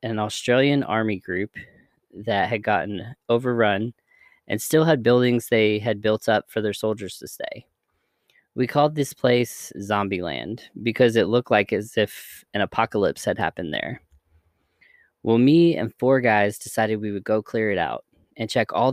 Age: 20-39